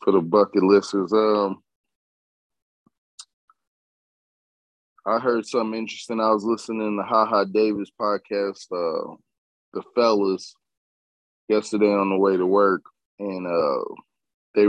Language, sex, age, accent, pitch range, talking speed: English, male, 20-39, American, 85-110 Hz, 125 wpm